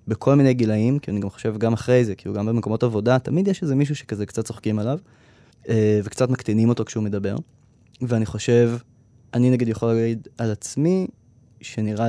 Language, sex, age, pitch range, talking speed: Hebrew, male, 20-39, 110-125 Hz, 185 wpm